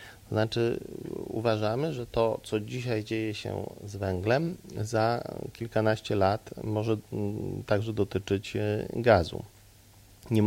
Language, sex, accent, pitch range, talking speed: Polish, male, native, 100-110 Hz, 105 wpm